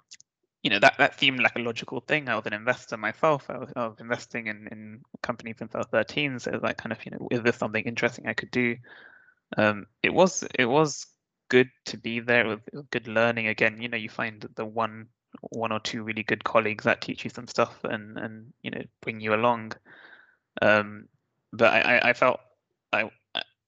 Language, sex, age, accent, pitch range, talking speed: English, male, 20-39, British, 110-125 Hz, 205 wpm